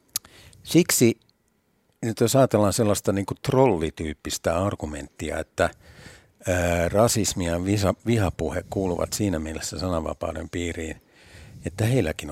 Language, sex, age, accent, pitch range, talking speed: Finnish, male, 60-79, native, 90-115 Hz, 95 wpm